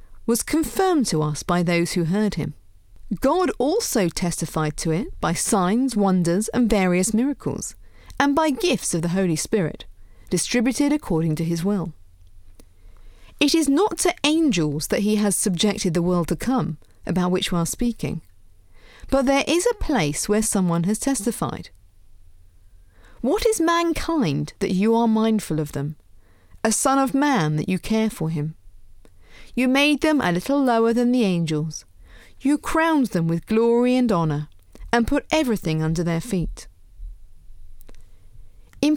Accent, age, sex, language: British, 40-59, female, English